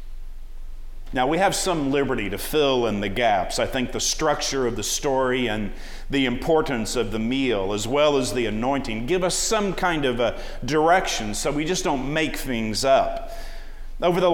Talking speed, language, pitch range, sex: 185 wpm, English, 115-170 Hz, male